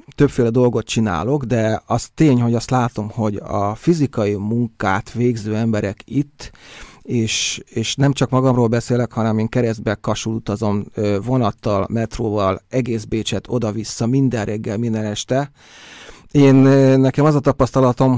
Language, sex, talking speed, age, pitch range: Hungarian, male, 135 wpm, 30-49, 110-135 Hz